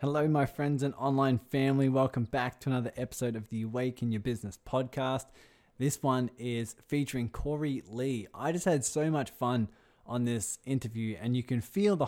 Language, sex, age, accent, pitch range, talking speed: English, male, 20-39, Australian, 115-140 Hz, 190 wpm